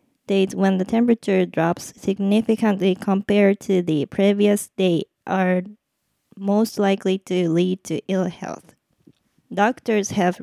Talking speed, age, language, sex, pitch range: 120 wpm, 20-39, English, female, 185-210 Hz